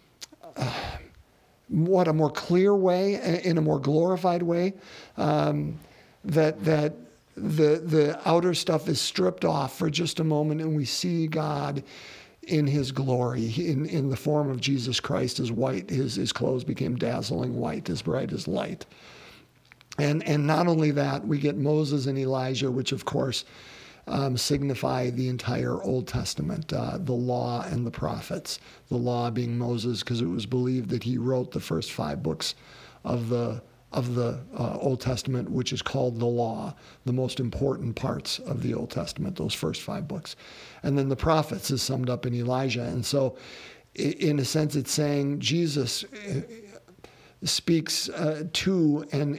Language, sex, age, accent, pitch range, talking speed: English, male, 50-69, American, 125-155 Hz, 165 wpm